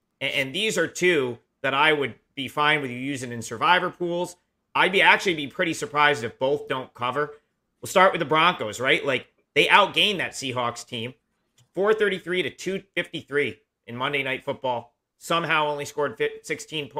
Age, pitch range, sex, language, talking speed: 40-59, 130-155 Hz, male, English, 170 wpm